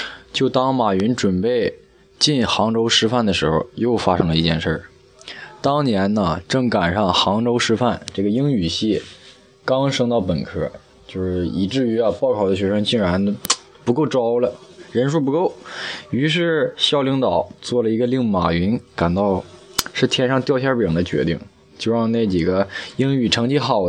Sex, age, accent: male, 20-39, native